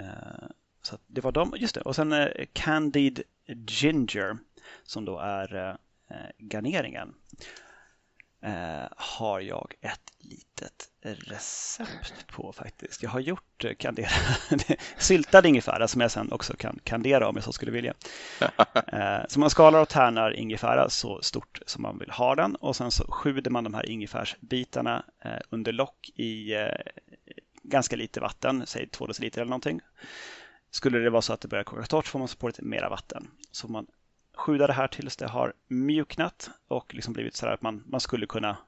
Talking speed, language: 165 wpm, Swedish